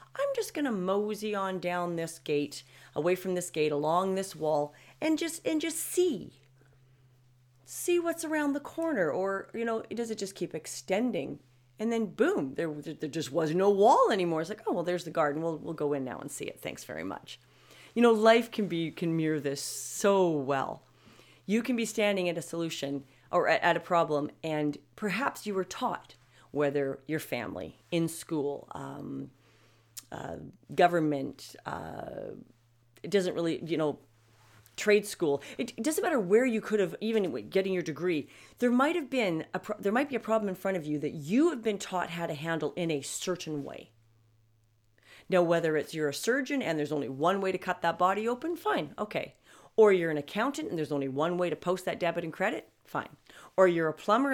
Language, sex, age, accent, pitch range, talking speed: English, female, 40-59, American, 150-215 Hz, 200 wpm